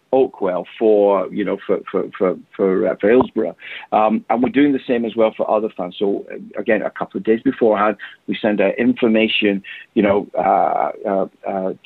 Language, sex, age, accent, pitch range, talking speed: English, male, 40-59, British, 100-110 Hz, 190 wpm